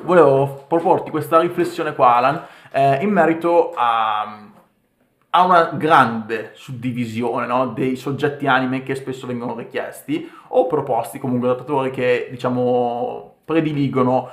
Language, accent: Italian, native